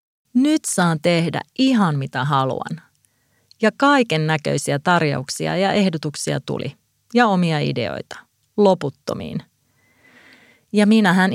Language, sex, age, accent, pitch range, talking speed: Finnish, female, 30-49, native, 150-200 Hz, 100 wpm